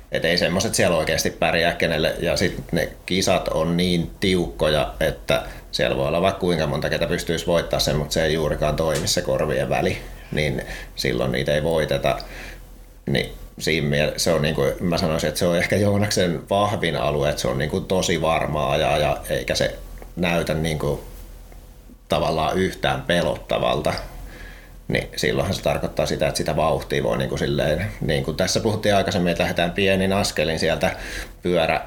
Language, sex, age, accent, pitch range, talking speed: Finnish, male, 30-49, native, 80-90 Hz, 170 wpm